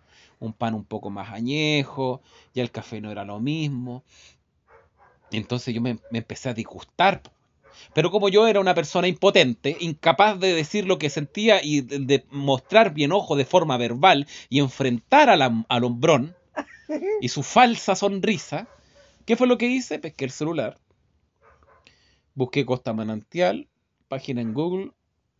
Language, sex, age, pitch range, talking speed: Spanish, male, 30-49, 125-200 Hz, 160 wpm